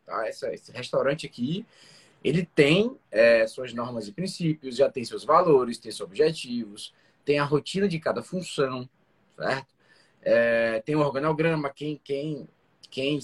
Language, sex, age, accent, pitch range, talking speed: Portuguese, male, 20-39, Brazilian, 145-205 Hz, 145 wpm